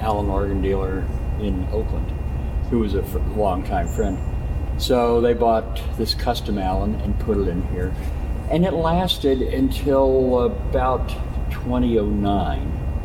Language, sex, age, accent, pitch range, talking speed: English, male, 50-69, American, 70-95 Hz, 130 wpm